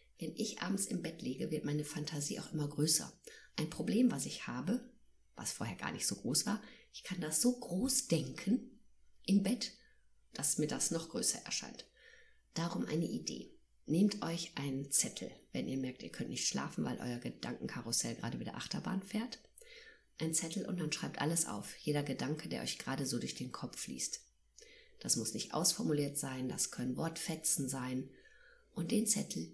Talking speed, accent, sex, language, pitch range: 180 wpm, German, female, German, 145-230 Hz